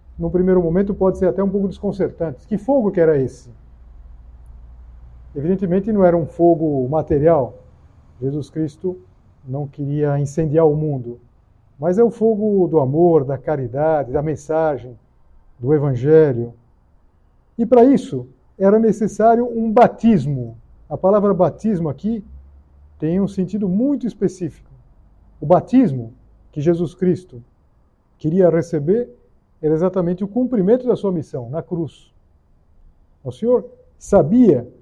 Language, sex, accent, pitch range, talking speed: Portuguese, male, Brazilian, 130-205 Hz, 130 wpm